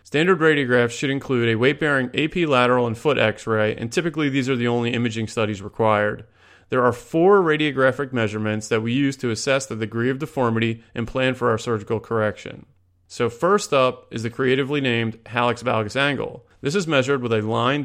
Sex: male